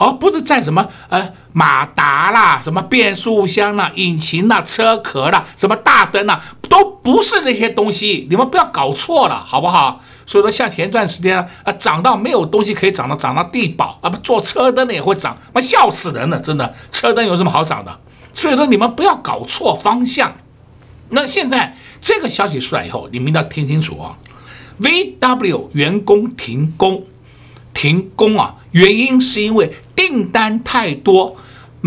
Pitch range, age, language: 155-245 Hz, 60-79, Chinese